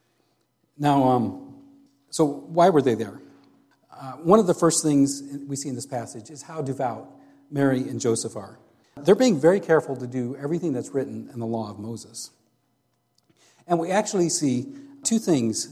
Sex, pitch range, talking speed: male, 115-155 Hz, 170 wpm